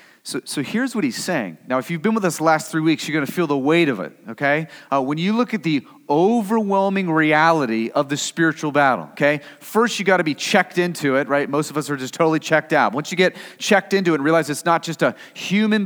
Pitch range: 145-180 Hz